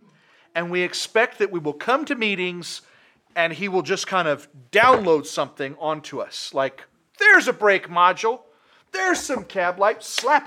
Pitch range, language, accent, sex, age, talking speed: 180-250 Hz, English, American, male, 40-59, 165 wpm